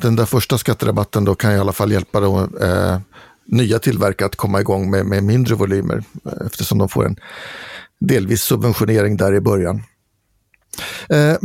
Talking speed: 160 wpm